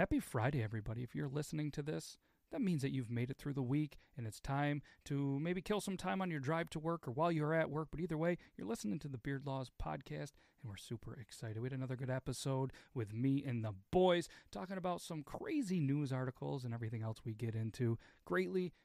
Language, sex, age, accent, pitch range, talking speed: English, male, 40-59, American, 125-180 Hz, 230 wpm